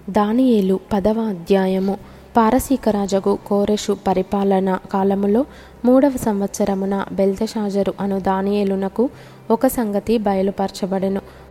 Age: 20-39